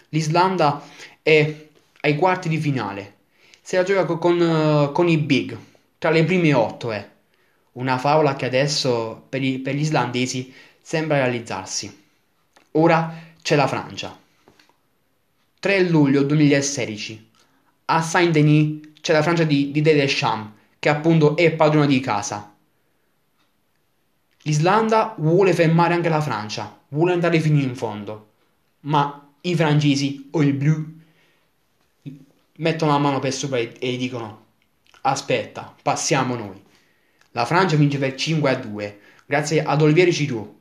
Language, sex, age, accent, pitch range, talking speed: Italian, male, 20-39, native, 125-160 Hz, 130 wpm